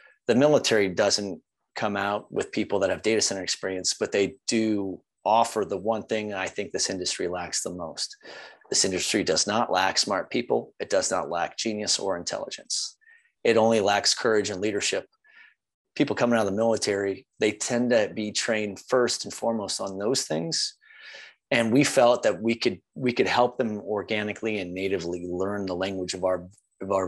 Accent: American